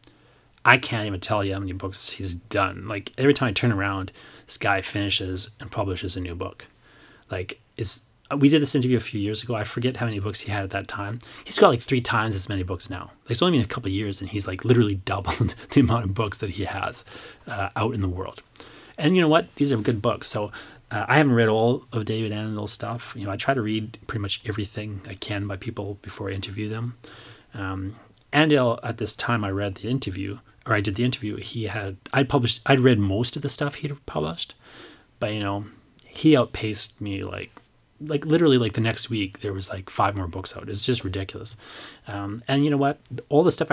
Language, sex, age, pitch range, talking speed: English, male, 30-49, 100-130 Hz, 230 wpm